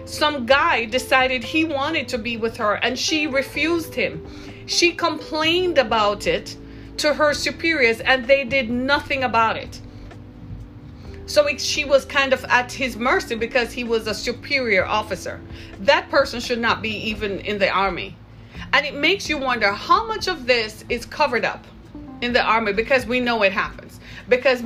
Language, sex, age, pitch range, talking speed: English, female, 40-59, 210-290 Hz, 170 wpm